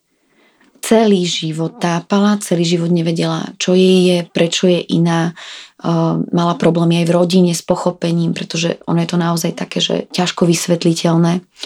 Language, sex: Slovak, female